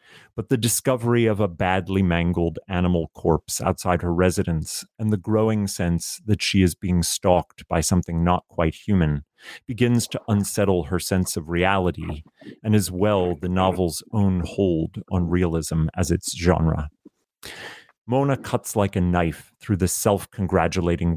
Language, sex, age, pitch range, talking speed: English, male, 30-49, 85-100 Hz, 150 wpm